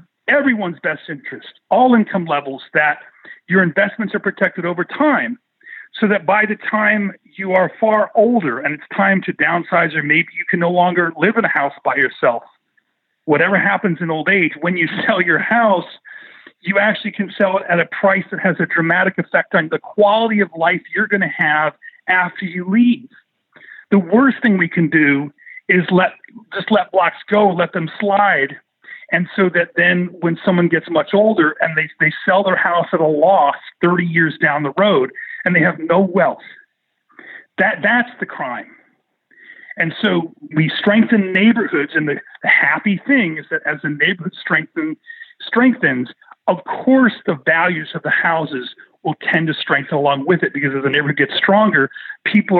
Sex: male